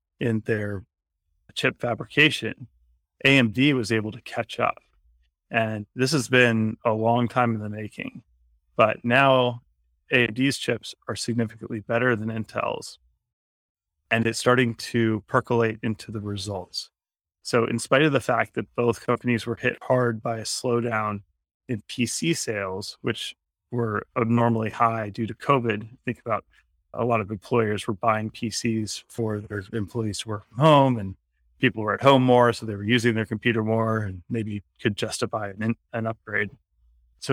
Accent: American